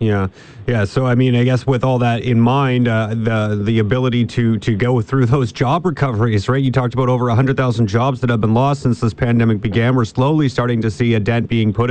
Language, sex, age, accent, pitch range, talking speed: English, male, 30-49, American, 115-135 Hz, 235 wpm